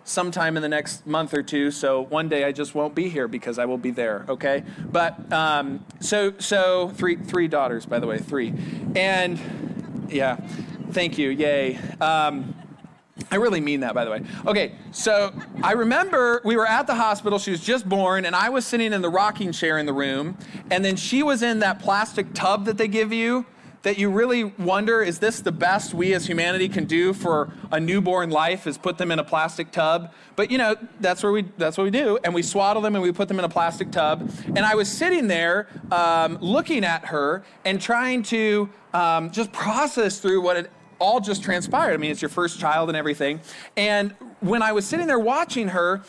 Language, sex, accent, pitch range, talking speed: English, male, American, 160-215 Hz, 215 wpm